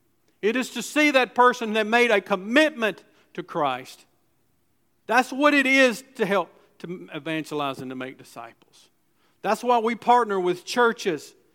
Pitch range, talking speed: 175-245 Hz, 155 wpm